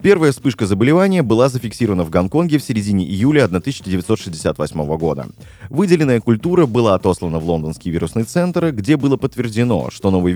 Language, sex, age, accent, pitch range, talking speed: Russian, male, 20-39, native, 95-135 Hz, 145 wpm